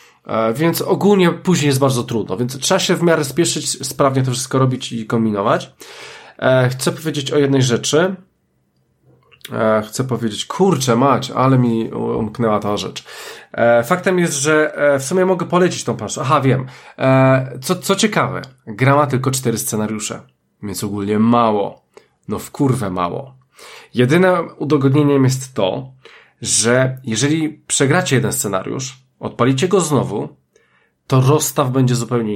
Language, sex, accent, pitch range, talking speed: Polish, male, native, 115-150 Hz, 135 wpm